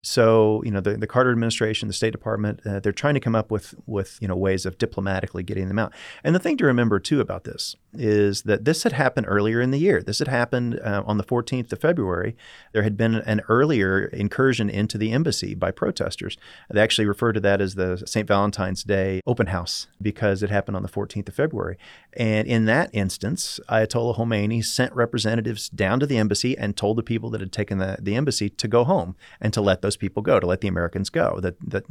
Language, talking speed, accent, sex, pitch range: English, 225 wpm, American, male, 95-110 Hz